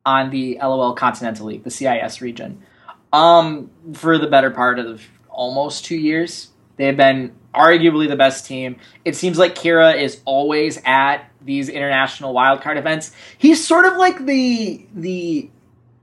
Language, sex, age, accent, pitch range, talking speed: English, male, 20-39, American, 140-215 Hz, 150 wpm